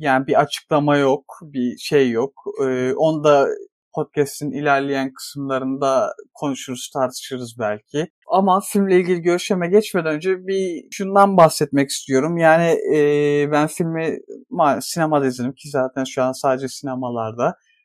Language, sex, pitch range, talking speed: Turkish, male, 140-165 Hz, 130 wpm